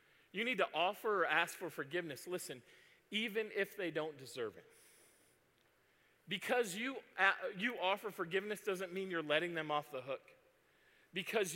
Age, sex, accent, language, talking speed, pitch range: 40-59, male, American, English, 150 wpm, 175-230 Hz